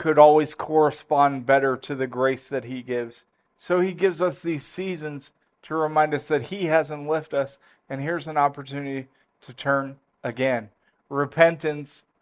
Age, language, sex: 20-39, English, male